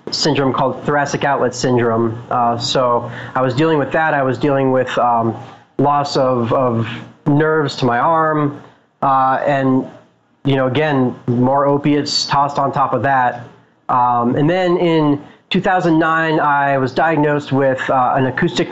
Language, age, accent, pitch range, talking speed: English, 30-49, American, 125-145 Hz, 155 wpm